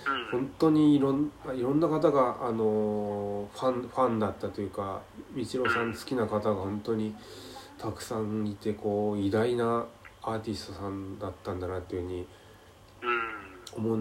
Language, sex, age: Japanese, male, 20-39